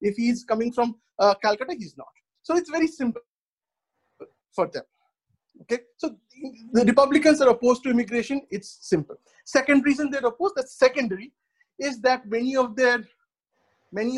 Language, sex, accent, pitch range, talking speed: English, male, Indian, 205-270 Hz, 140 wpm